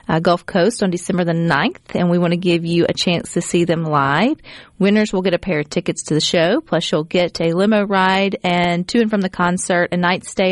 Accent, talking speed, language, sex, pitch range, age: American, 250 wpm, English, female, 165-195 Hz, 40-59